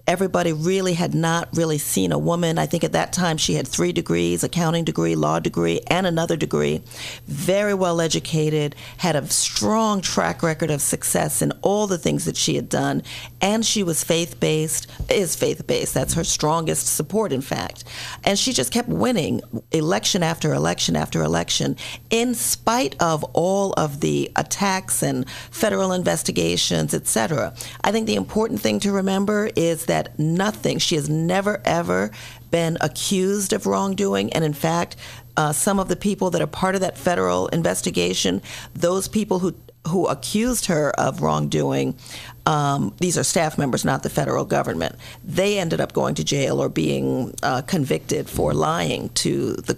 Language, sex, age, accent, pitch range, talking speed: English, female, 40-59, American, 120-190 Hz, 170 wpm